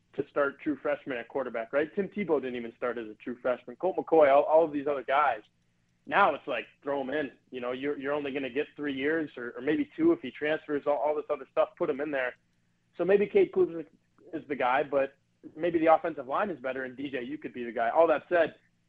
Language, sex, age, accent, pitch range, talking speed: English, male, 20-39, American, 125-155 Hz, 255 wpm